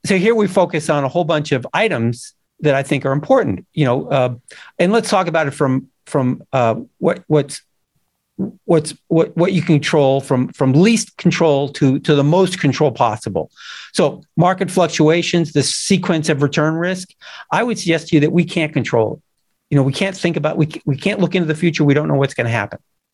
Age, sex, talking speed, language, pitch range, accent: 50-69, male, 210 wpm, English, 140-175 Hz, American